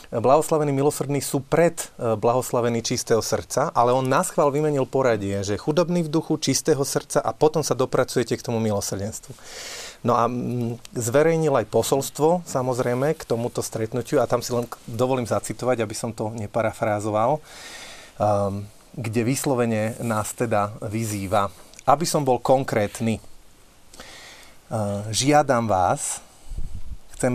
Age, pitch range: 30-49, 110-130 Hz